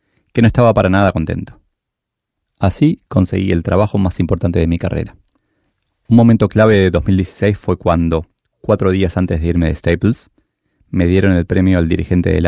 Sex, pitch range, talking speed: male, 85-105 Hz, 175 wpm